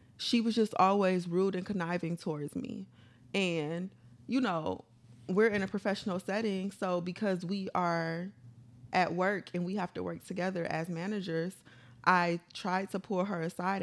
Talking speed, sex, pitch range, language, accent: 160 wpm, female, 160-195 Hz, English, American